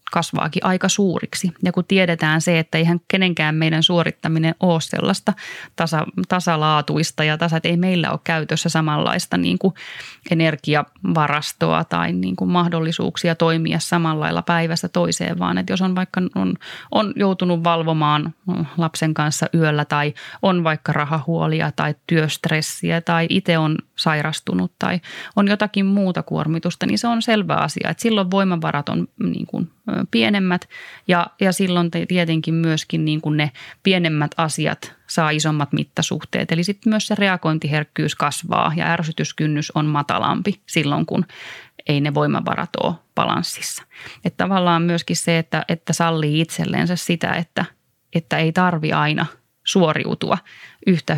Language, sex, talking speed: Finnish, female, 140 wpm